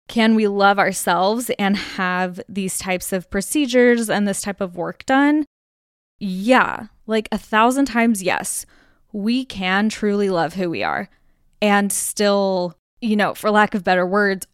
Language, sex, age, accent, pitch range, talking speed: English, female, 10-29, American, 195-235 Hz, 155 wpm